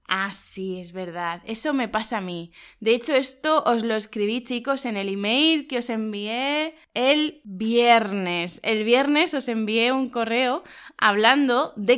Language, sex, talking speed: Spanish, female, 160 wpm